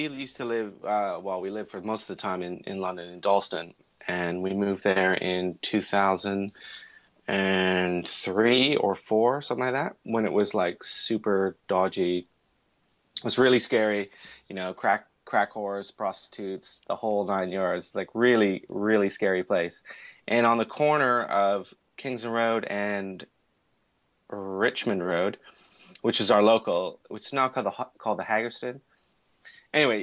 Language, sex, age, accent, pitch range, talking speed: English, male, 30-49, American, 95-125 Hz, 150 wpm